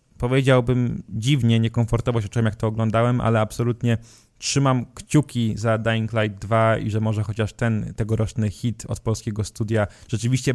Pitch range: 115-125 Hz